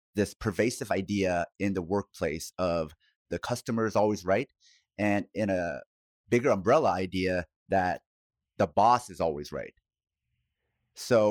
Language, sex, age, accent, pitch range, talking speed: English, male, 30-49, American, 90-110 Hz, 135 wpm